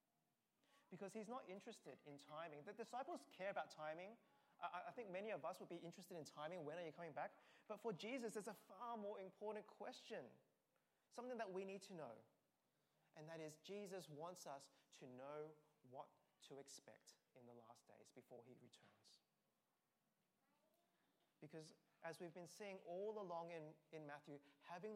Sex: male